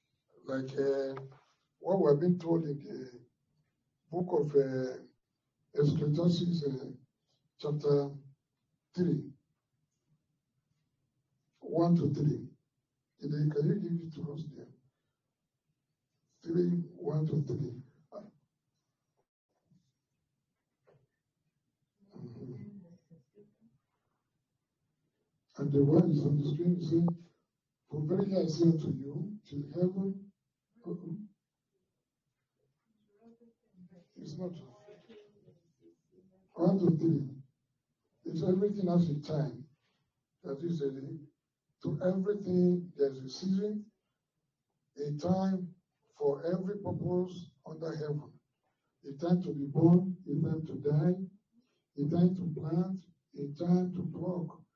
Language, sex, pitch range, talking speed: English, male, 140-175 Hz, 100 wpm